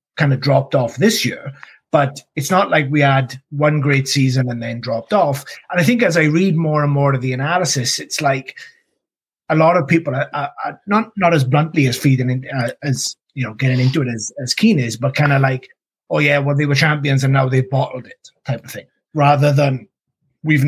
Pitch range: 130-150 Hz